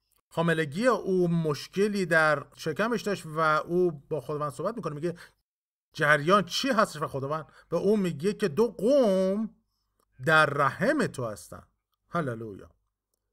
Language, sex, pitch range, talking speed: Persian, male, 125-180 Hz, 130 wpm